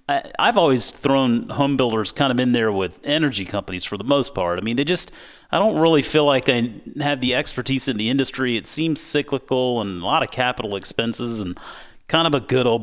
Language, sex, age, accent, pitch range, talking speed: English, male, 30-49, American, 110-145 Hz, 220 wpm